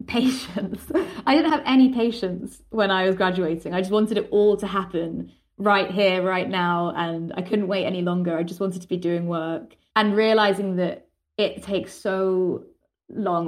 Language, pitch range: English, 175-200 Hz